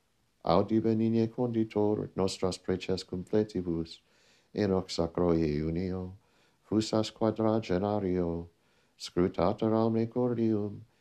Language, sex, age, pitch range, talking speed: English, male, 60-79, 85-110 Hz, 80 wpm